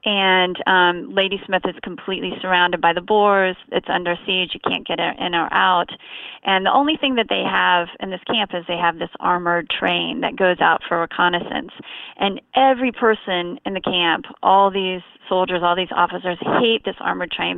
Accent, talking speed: American, 190 wpm